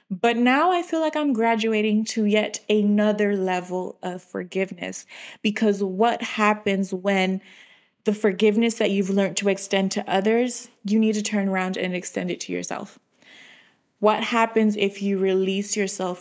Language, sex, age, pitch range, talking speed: English, female, 20-39, 190-215 Hz, 155 wpm